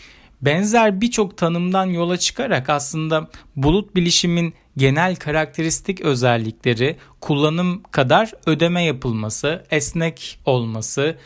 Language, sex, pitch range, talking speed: Turkish, male, 130-180 Hz, 90 wpm